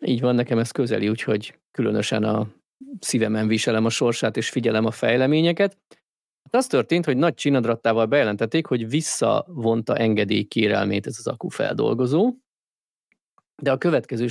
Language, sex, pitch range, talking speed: Hungarian, male, 110-140 Hz, 135 wpm